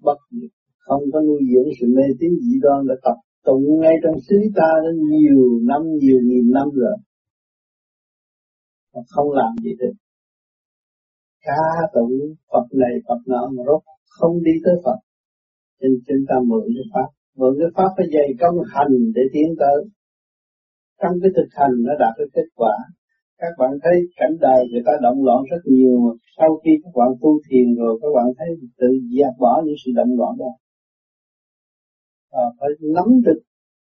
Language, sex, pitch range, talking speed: Vietnamese, male, 125-170 Hz, 175 wpm